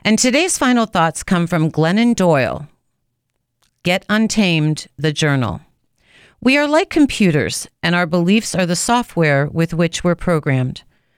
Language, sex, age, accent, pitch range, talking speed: English, female, 40-59, American, 155-200 Hz, 140 wpm